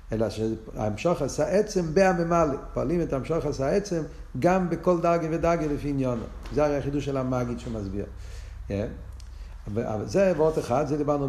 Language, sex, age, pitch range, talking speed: Hebrew, male, 50-69, 110-150 Hz, 150 wpm